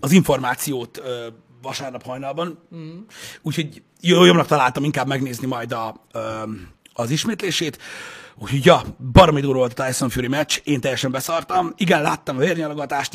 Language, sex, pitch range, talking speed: Hungarian, male, 125-160 Hz, 140 wpm